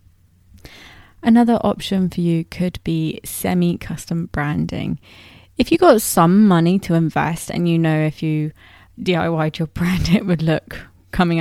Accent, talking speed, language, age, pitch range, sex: British, 140 wpm, English, 20-39, 160-190 Hz, female